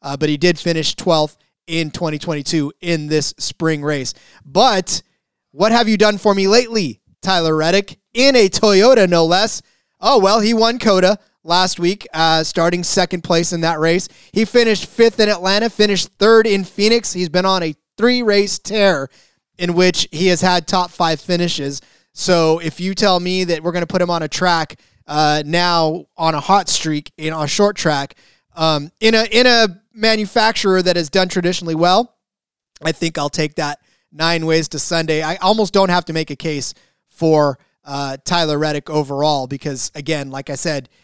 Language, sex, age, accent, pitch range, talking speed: English, male, 30-49, American, 155-200 Hz, 185 wpm